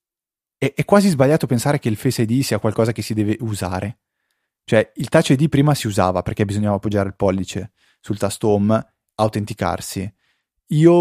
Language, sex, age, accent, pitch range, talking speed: Italian, male, 20-39, native, 105-125 Hz, 165 wpm